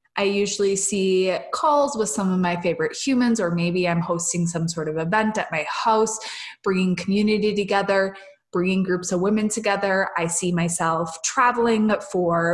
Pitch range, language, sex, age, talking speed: 175-220 Hz, English, female, 20-39, 165 wpm